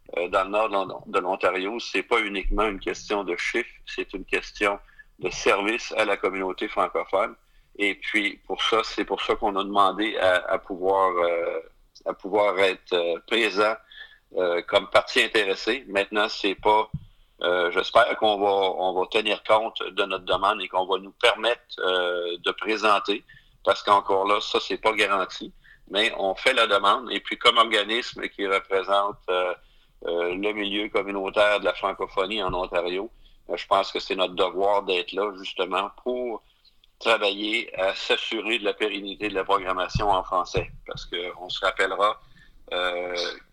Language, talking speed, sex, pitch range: French, 165 wpm, male, 95-110 Hz